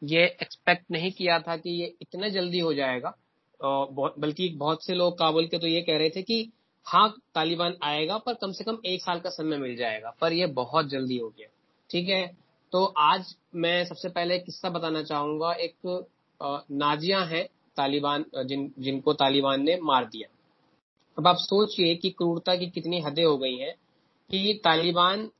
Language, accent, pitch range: Hindi, native, 150-180 Hz